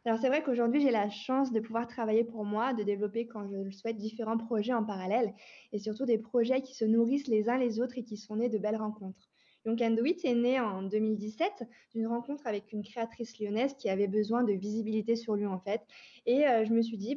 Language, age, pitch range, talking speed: French, 20-39, 215-265 Hz, 230 wpm